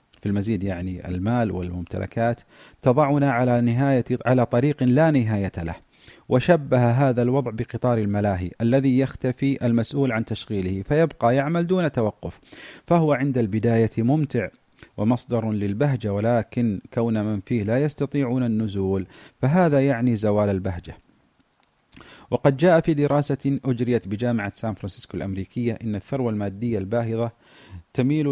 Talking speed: 120 wpm